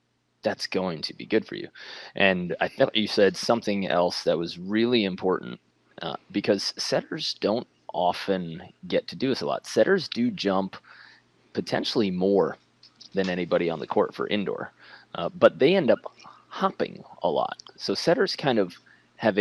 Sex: male